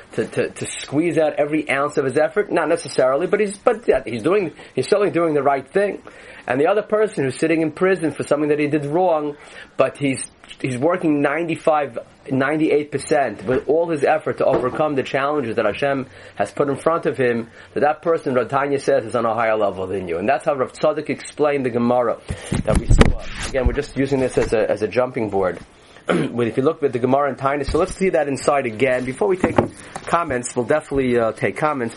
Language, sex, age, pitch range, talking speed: English, male, 30-49, 135-160 Hz, 220 wpm